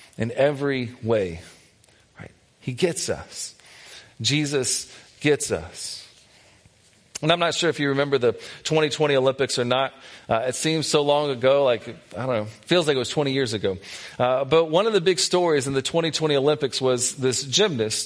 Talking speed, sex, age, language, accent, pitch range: 185 wpm, male, 40-59, English, American, 125-155 Hz